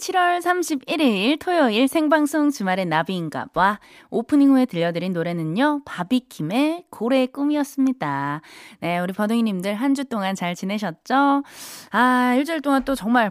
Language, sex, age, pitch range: Korean, female, 20-39, 185-285 Hz